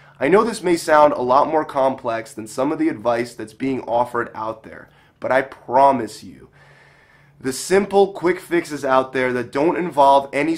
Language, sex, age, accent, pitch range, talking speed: English, male, 20-39, American, 125-160 Hz, 185 wpm